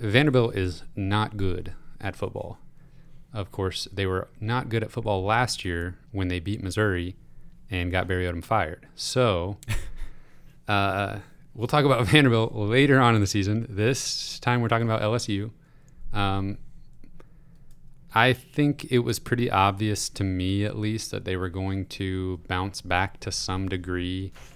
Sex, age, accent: male, 30-49, American